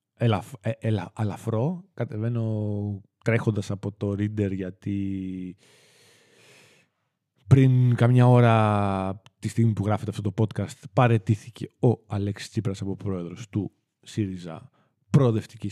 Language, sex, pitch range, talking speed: Greek, male, 95-120 Hz, 115 wpm